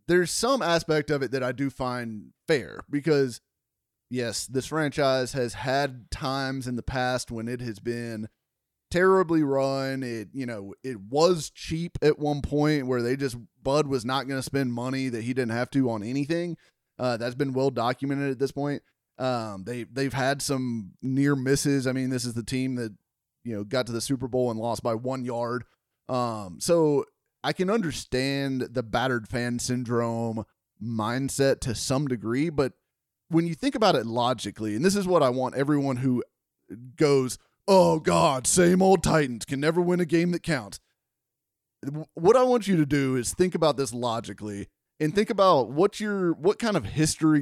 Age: 30-49